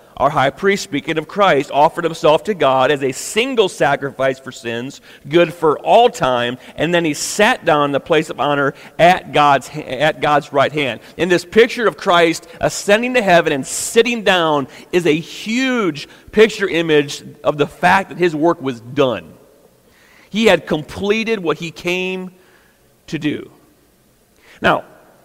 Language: English